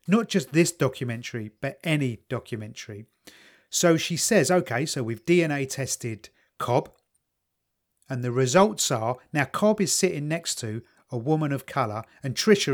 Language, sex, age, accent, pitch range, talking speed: English, male, 30-49, British, 125-175 Hz, 150 wpm